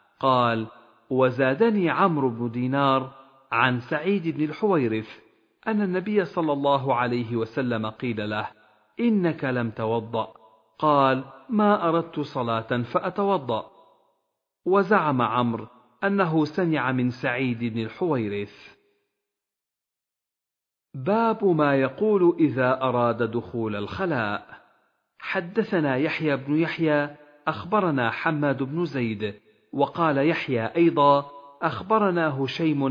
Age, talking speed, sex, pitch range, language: 40-59, 95 wpm, male, 120-165 Hz, Arabic